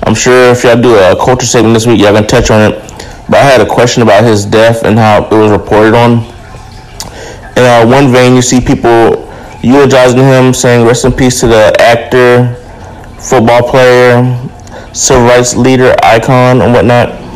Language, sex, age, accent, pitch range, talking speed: English, male, 20-39, American, 110-125 Hz, 185 wpm